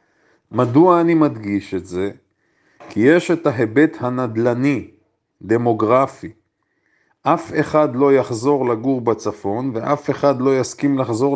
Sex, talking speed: male, 115 wpm